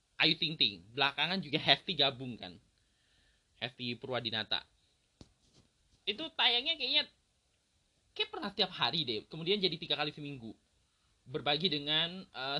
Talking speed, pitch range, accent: 125 wpm, 125-185 Hz, native